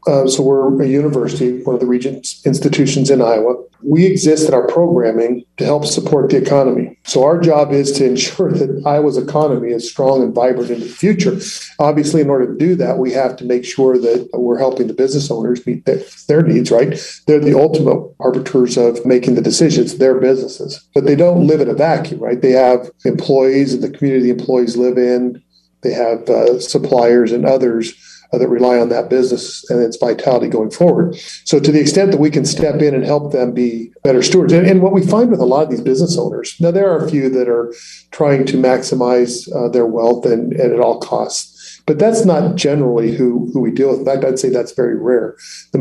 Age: 40-59